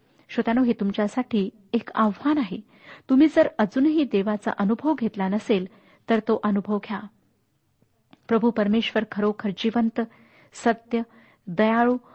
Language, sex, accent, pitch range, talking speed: Marathi, female, native, 205-245 Hz, 115 wpm